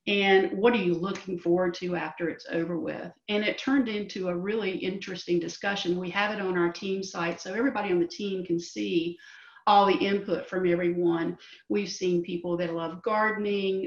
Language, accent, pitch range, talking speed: English, American, 175-210 Hz, 190 wpm